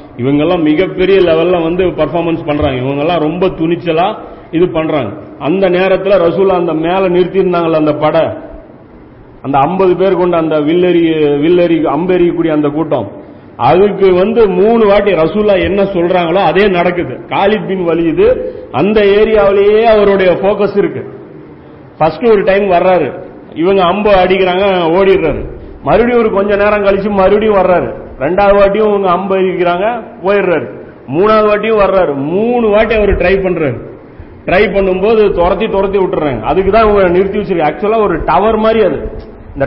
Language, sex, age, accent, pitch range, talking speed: Tamil, male, 40-59, native, 170-200 Hz, 130 wpm